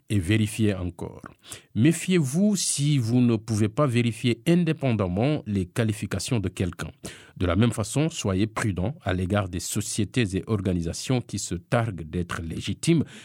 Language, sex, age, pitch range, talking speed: English, male, 50-69, 95-130 Hz, 145 wpm